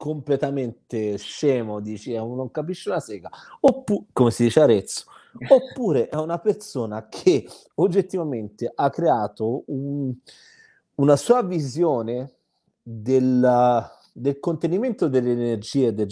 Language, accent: Italian, native